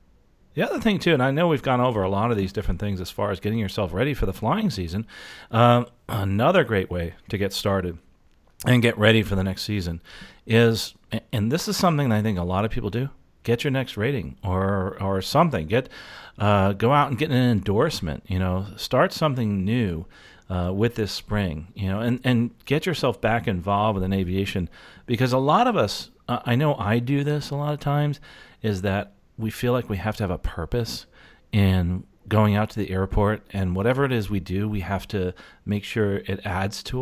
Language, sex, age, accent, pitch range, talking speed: English, male, 40-59, American, 95-120 Hz, 215 wpm